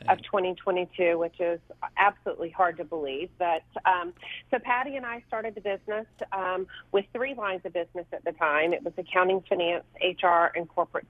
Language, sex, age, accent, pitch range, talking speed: English, female, 40-59, American, 175-195 Hz, 180 wpm